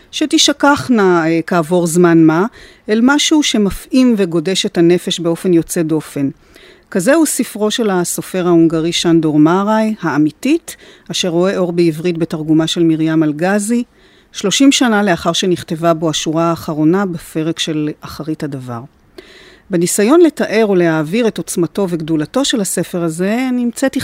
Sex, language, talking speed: female, Hebrew, 125 wpm